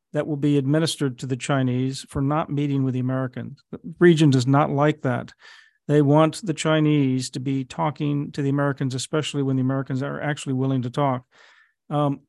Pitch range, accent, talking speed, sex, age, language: 140-155 Hz, American, 190 wpm, male, 50-69, English